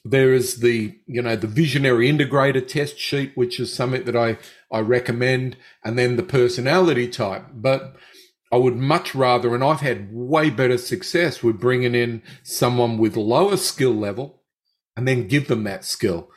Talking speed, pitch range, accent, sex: 170 wpm, 115-145 Hz, Australian, male